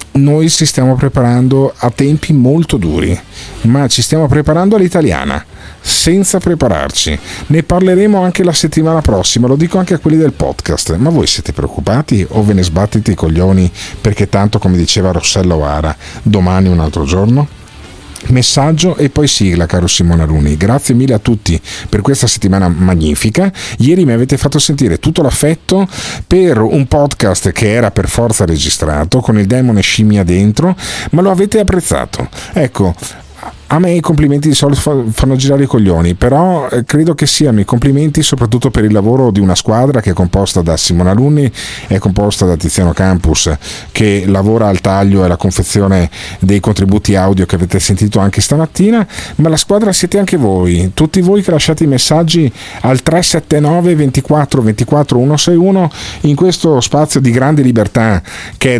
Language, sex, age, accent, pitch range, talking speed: Italian, male, 50-69, native, 95-150 Hz, 165 wpm